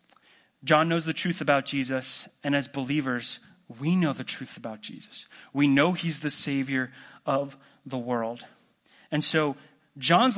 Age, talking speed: 30-49, 150 wpm